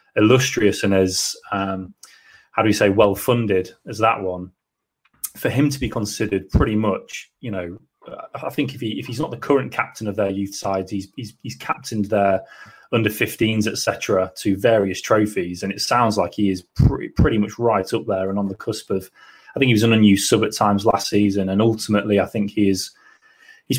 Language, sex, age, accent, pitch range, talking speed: English, male, 20-39, British, 95-110 Hz, 205 wpm